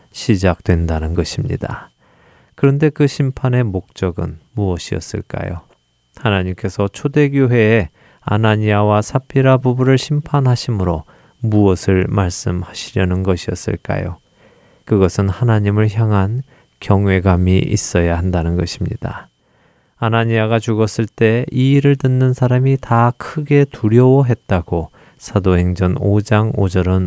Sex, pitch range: male, 95-125 Hz